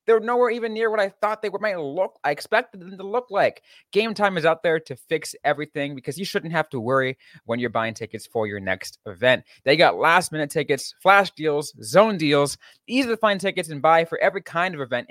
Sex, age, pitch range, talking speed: male, 20-39, 130-200 Hz, 230 wpm